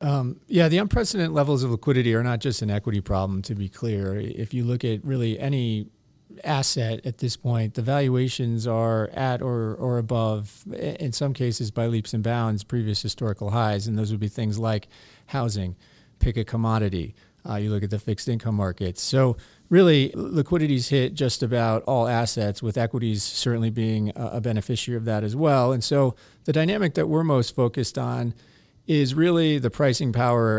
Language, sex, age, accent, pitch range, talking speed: English, male, 40-59, American, 115-135 Hz, 180 wpm